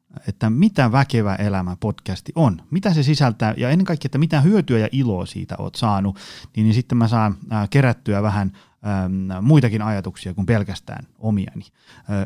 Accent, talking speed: native, 170 wpm